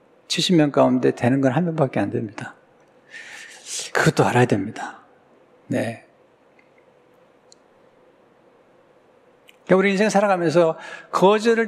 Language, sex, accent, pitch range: Korean, male, native, 140-195 Hz